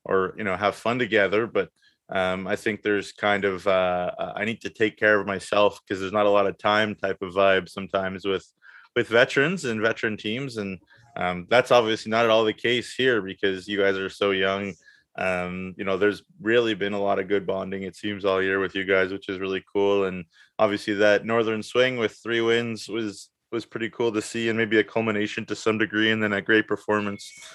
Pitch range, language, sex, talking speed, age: 100-110 Hz, English, male, 220 wpm, 20-39